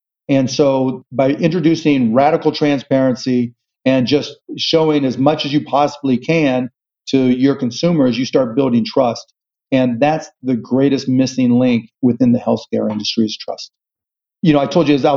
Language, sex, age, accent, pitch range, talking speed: English, male, 40-59, American, 130-150 Hz, 160 wpm